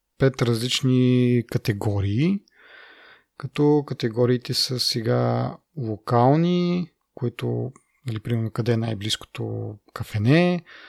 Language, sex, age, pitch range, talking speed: Bulgarian, male, 30-49, 115-140 Hz, 75 wpm